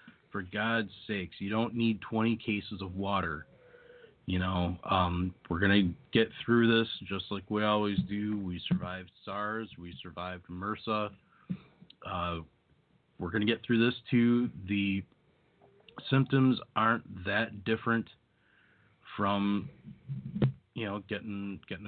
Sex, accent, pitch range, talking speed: male, American, 90-110 Hz, 130 wpm